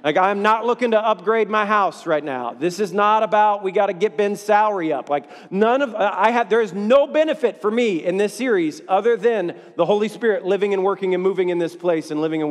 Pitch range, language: 180-245 Hz, English